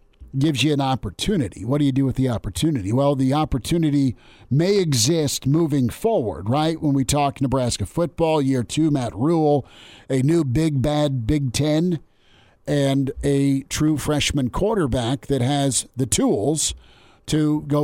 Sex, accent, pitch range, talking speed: male, American, 125-150 Hz, 150 wpm